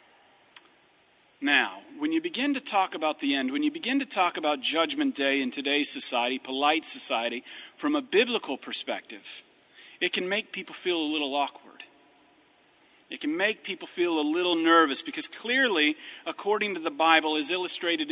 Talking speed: 165 wpm